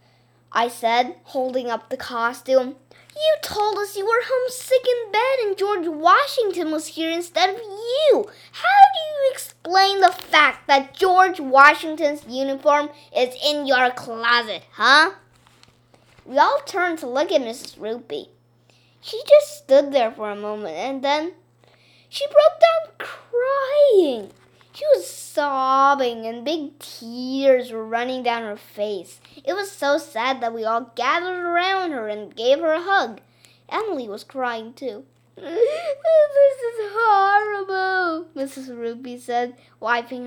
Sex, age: female, 20-39